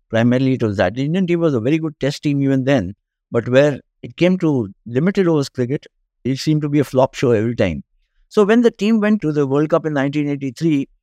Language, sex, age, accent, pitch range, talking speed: English, male, 60-79, Indian, 120-155 Hz, 235 wpm